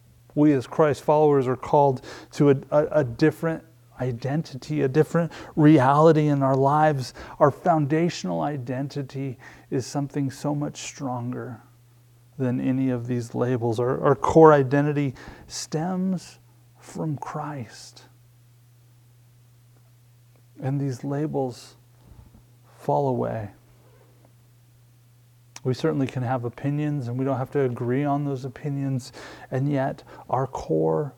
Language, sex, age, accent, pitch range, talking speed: English, male, 30-49, American, 120-150 Hz, 115 wpm